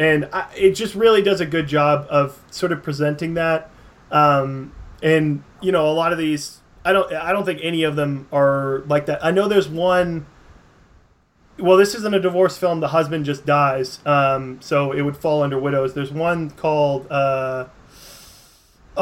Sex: male